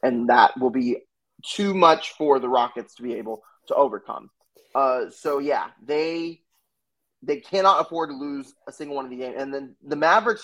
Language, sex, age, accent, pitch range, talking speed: English, male, 20-39, American, 125-170 Hz, 190 wpm